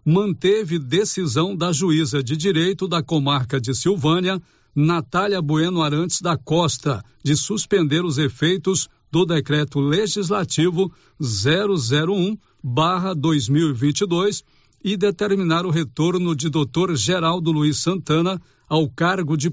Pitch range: 155-185 Hz